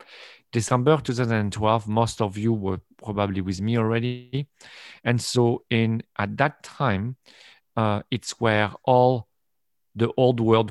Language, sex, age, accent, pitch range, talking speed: English, male, 40-59, French, 100-120 Hz, 130 wpm